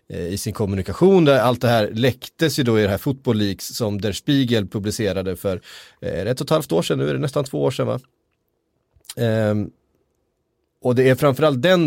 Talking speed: 190 wpm